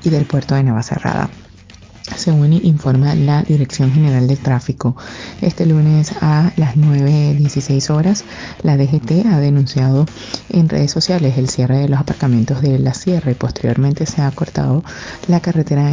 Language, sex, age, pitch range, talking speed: Spanish, female, 20-39, 130-155 Hz, 155 wpm